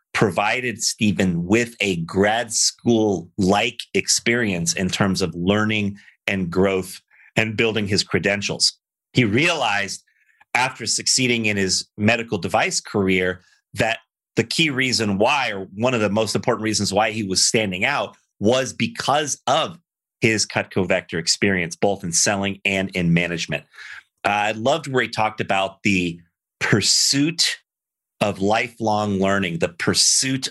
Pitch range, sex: 90-110 Hz, male